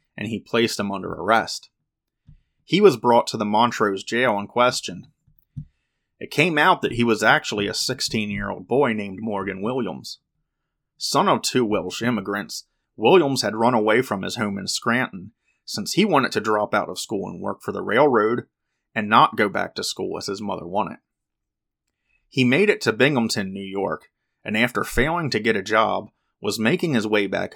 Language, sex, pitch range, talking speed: English, male, 100-115 Hz, 185 wpm